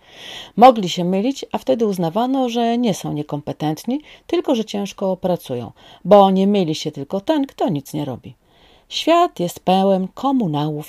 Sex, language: female, Polish